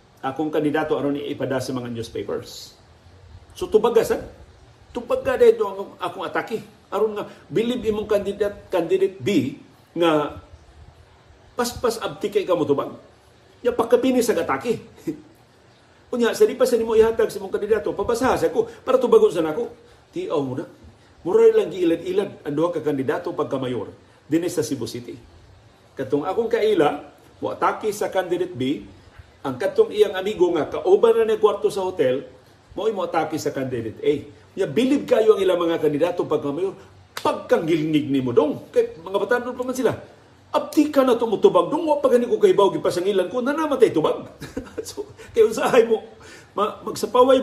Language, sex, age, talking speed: Filipino, male, 50-69, 150 wpm